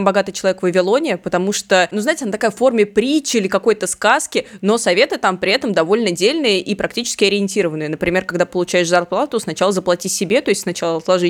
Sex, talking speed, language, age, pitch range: female, 195 wpm, Russian, 20-39, 175-205 Hz